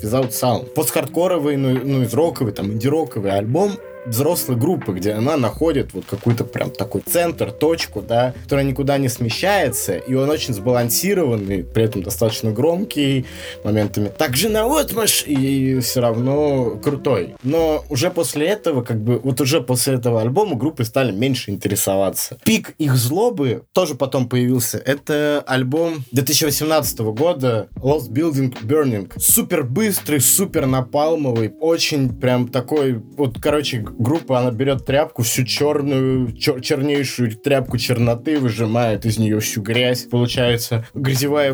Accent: native